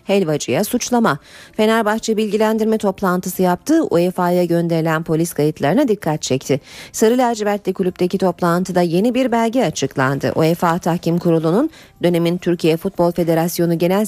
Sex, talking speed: female, 120 wpm